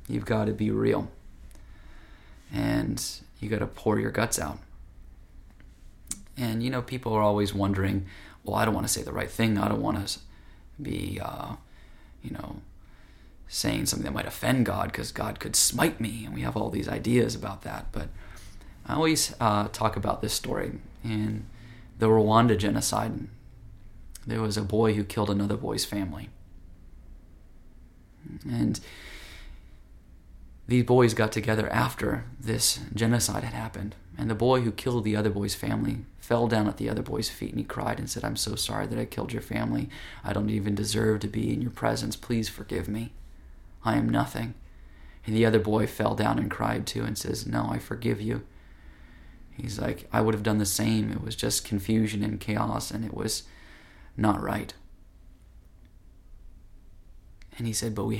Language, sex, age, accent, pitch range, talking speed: English, male, 20-39, American, 95-110 Hz, 175 wpm